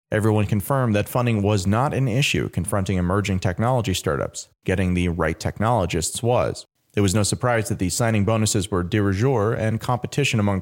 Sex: male